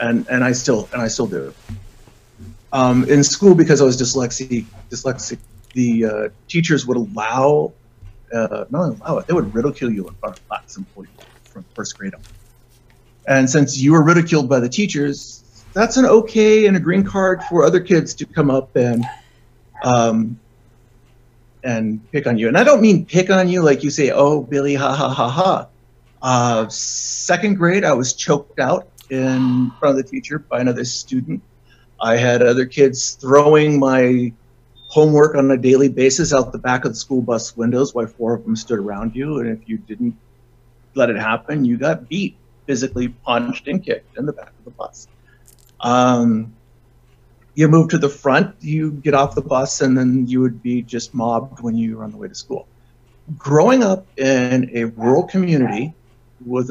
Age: 40-59